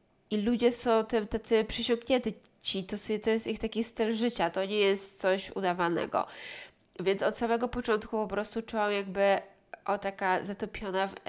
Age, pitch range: 20-39, 180-215 Hz